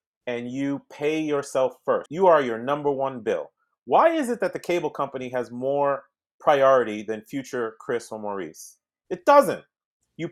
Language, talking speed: English, 170 wpm